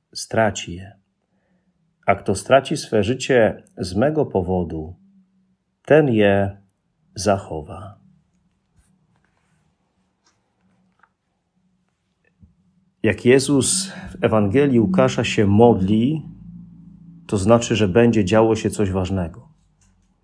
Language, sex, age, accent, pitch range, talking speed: Polish, male, 40-59, native, 100-120 Hz, 85 wpm